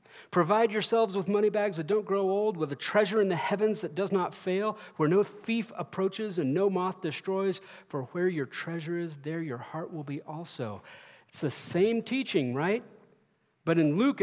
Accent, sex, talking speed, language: American, male, 195 wpm, English